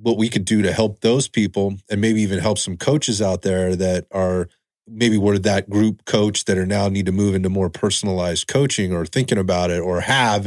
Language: English